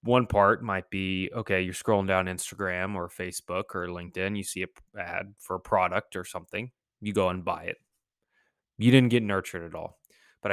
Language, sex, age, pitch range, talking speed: English, male, 20-39, 90-110 Hz, 195 wpm